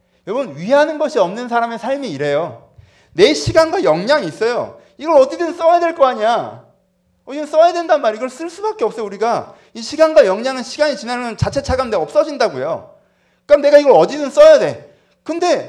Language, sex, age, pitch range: Korean, male, 30-49, 185-310 Hz